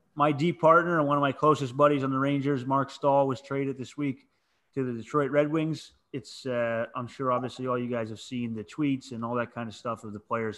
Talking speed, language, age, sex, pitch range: 255 wpm, English, 30-49, male, 120-140 Hz